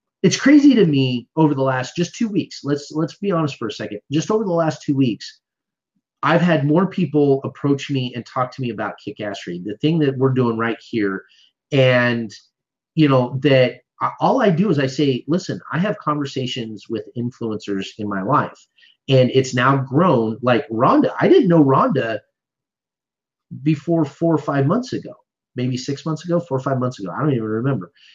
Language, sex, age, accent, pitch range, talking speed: English, male, 30-49, American, 125-155 Hz, 190 wpm